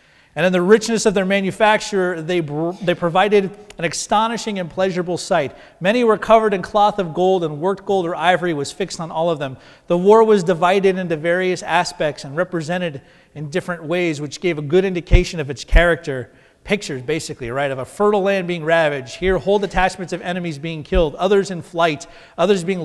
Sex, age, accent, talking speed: male, 30-49, American, 195 wpm